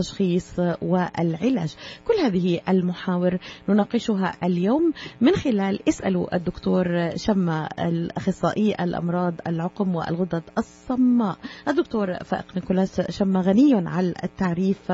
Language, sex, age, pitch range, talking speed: Arabic, female, 30-49, 175-200 Hz, 95 wpm